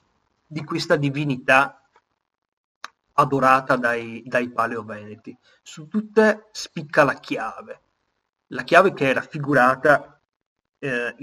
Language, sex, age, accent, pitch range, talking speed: Italian, male, 30-49, native, 120-145 Hz, 95 wpm